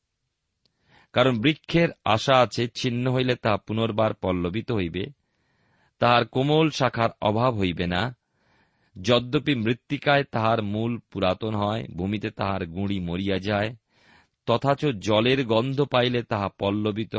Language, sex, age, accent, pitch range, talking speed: Bengali, male, 40-59, native, 105-130 Hz, 115 wpm